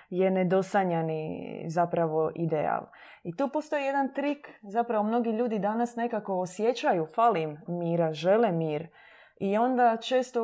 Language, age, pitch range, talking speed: Croatian, 20-39, 180-235 Hz, 125 wpm